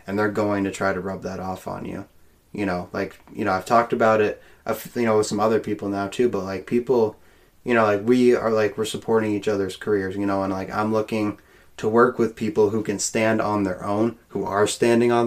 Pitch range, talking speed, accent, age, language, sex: 95-110 Hz, 245 wpm, American, 20-39, English, male